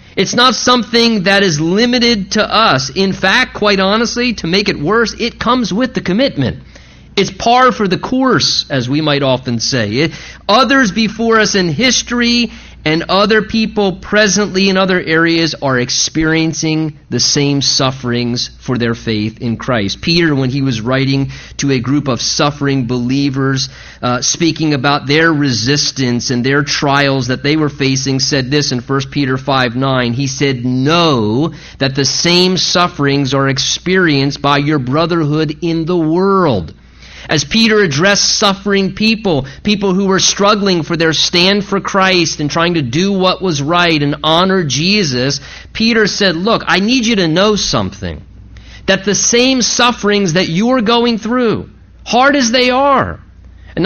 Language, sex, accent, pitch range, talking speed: English, male, American, 140-215 Hz, 160 wpm